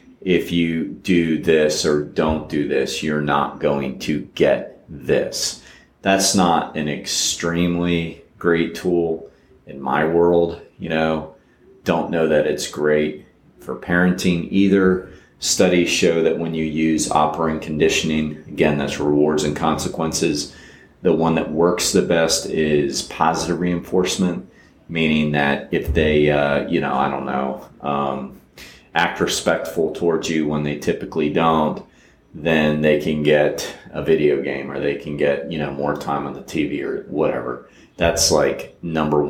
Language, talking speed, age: English, 150 wpm, 30-49